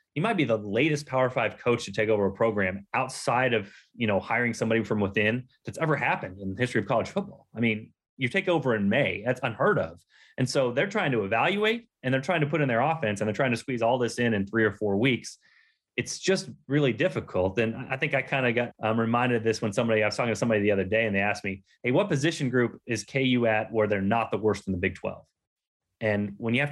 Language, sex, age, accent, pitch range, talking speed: English, male, 30-49, American, 110-145 Hz, 260 wpm